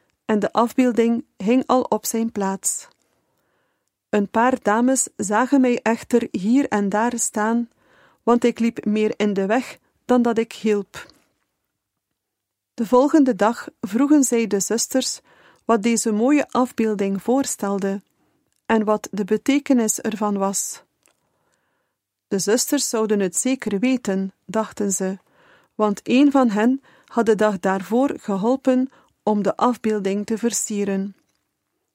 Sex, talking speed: female, 130 wpm